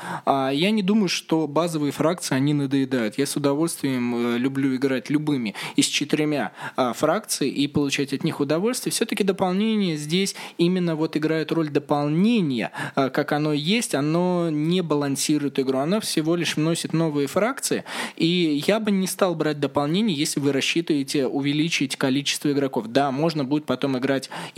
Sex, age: male, 20-39